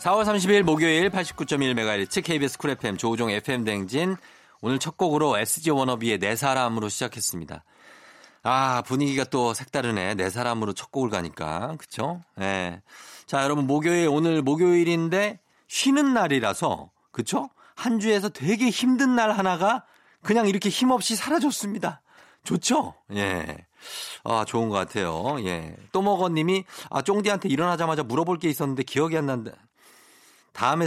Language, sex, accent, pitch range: Korean, male, native, 110-170 Hz